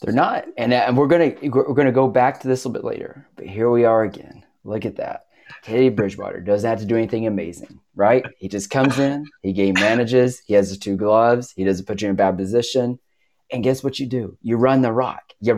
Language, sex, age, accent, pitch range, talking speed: English, male, 30-49, American, 105-130 Hz, 245 wpm